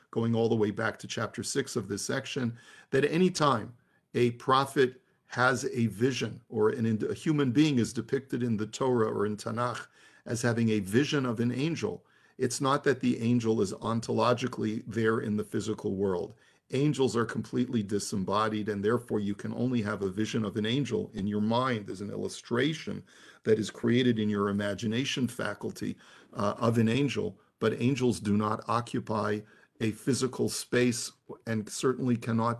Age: 50-69